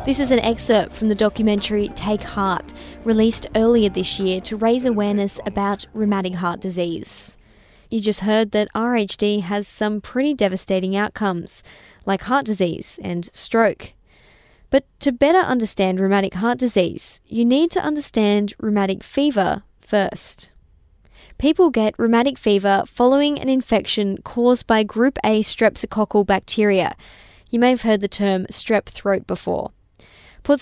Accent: Australian